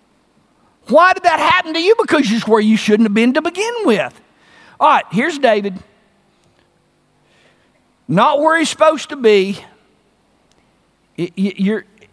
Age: 50-69